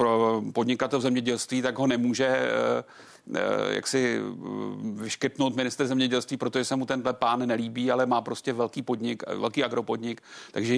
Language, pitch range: Czech, 120-135 Hz